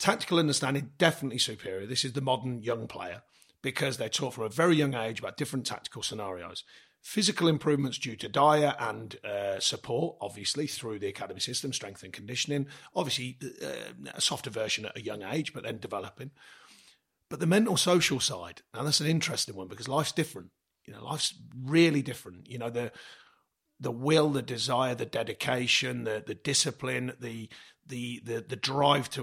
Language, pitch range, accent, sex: English, 115-150 Hz, British, male